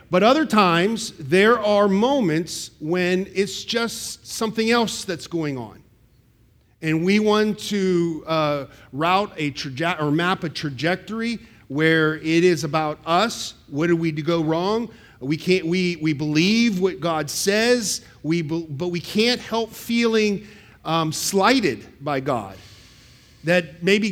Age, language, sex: 50-69, English, male